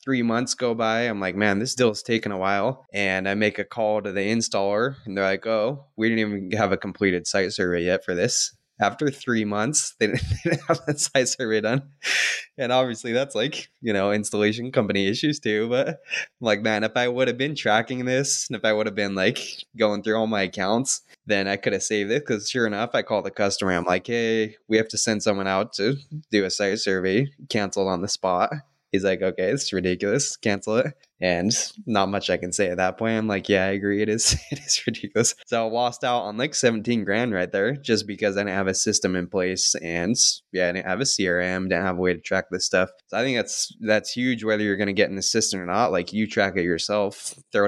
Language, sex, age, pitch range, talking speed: English, male, 20-39, 95-120 Hz, 240 wpm